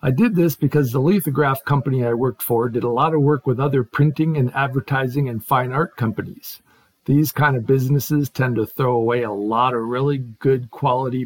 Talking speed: 205 wpm